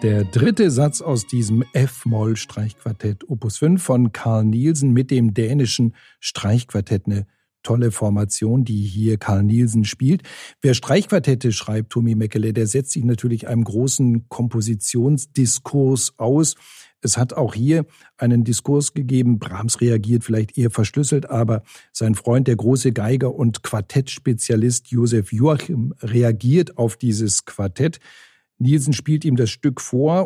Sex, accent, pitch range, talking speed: male, German, 115-135 Hz, 135 wpm